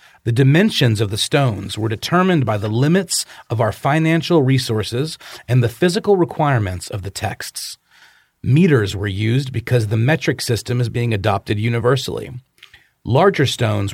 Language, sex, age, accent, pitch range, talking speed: English, male, 40-59, American, 110-145 Hz, 145 wpm